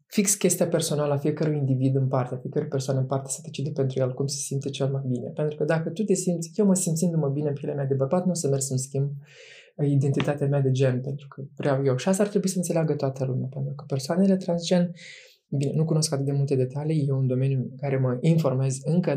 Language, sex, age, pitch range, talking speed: Romanian, male, 20-39, 135-170 Hz, 250 wpm